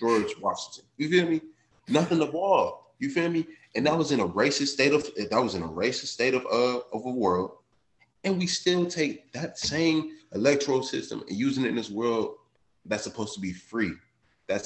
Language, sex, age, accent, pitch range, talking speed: English, male, 20-39, American, 105-145 Hz, 205 wpm